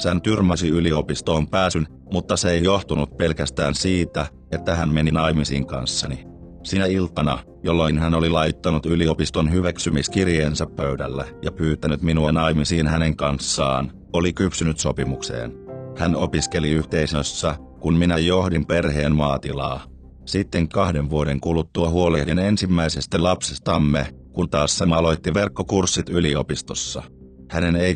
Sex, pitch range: male, 75-85 Hz